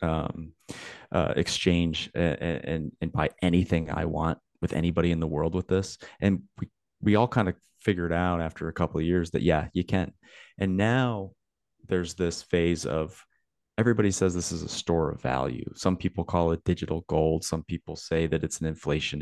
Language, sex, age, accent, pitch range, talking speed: English, male, 30-49, American, 80-95 Hz, 190 wpm